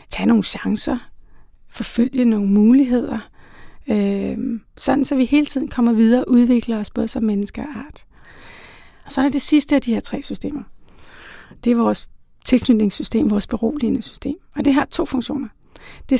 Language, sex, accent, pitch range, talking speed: Danish, female, native, 215-265 Hz, 165 wpm